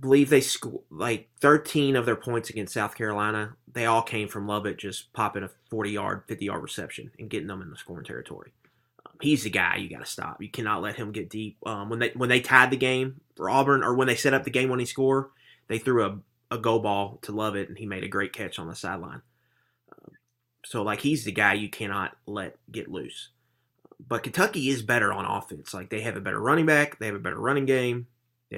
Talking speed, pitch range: 235 wpm, 110-135 Hz